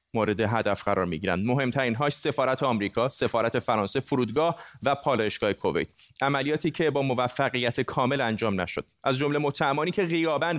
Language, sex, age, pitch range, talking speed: Persian, male, 30-49, 115-150 Hz, 140 wpm